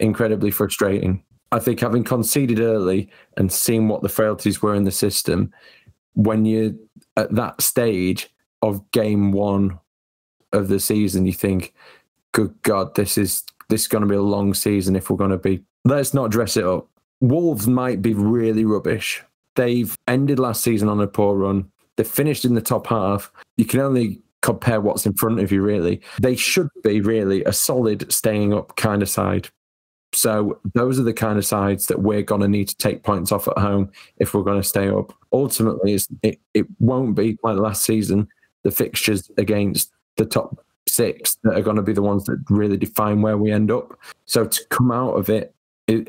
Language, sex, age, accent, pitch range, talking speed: English, male, 20-39, British, 100-115 Hz, 195 wpm